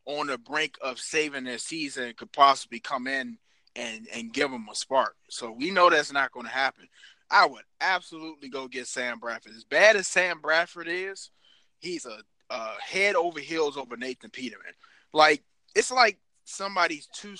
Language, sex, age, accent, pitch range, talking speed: English, male, 20-39, American, 125-175 Hz, 180 wpm